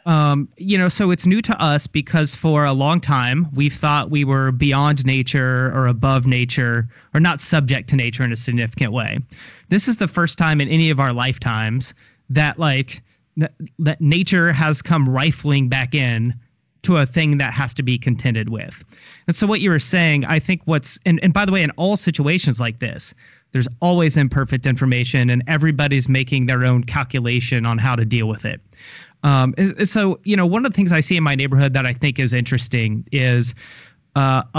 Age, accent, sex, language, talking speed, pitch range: 30-49, American, male, English, 200 wpm, 130-165 Hz